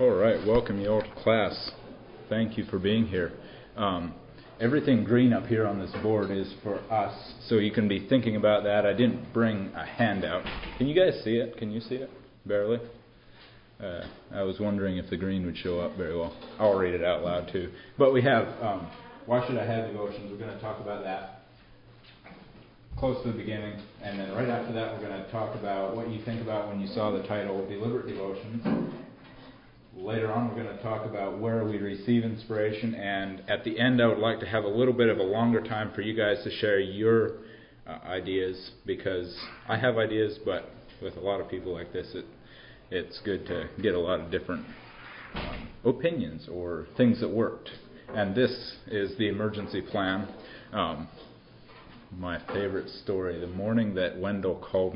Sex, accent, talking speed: male, American, 195 wpm